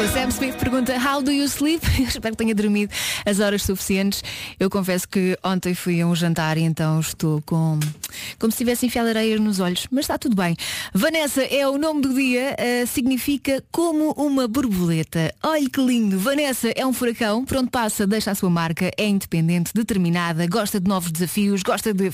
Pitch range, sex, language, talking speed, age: 185-260 Hz, female, Portuguese, 190 wpm, 20-39